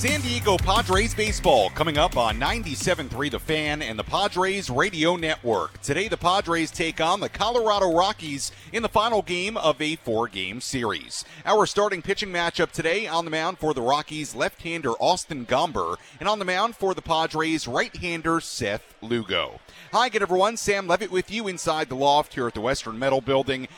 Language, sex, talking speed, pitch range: English, male, 180 wpm, 130-175 Hz